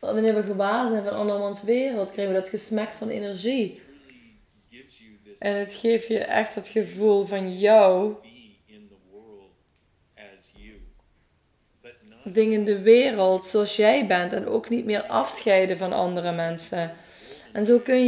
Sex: female